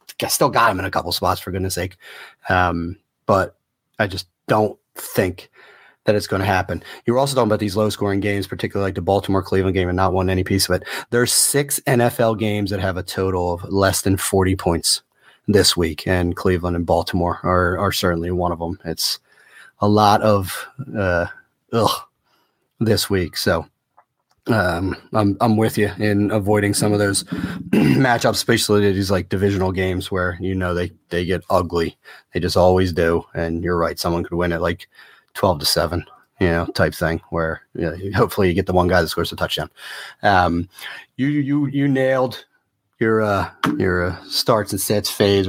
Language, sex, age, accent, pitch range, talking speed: English, male, 30-49, American, 90-105 Hz, 190 wpm